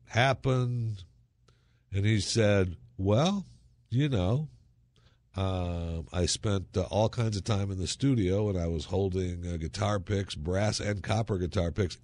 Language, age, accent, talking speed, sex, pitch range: English, 60-79, American, 150 wpm, male, 100-125 Hz